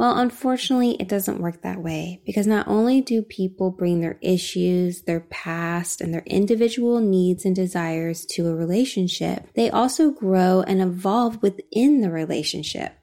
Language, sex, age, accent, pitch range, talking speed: English, female, 20-39, American, 185-230 Hz, 155 wpm